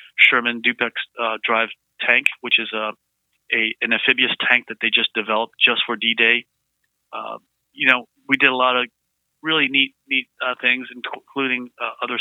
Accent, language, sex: American, English, male